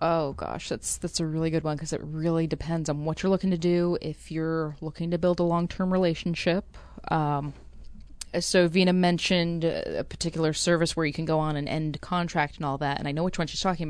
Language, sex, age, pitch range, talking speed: English, female, 20-39, 145-170 Hz, 220 wpm